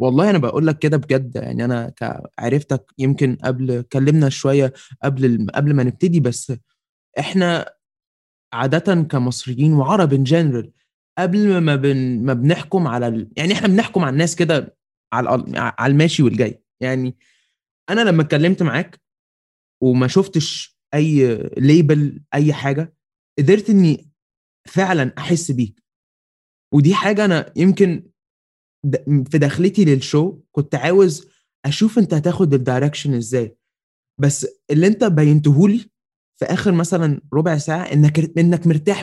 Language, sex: Arabic, male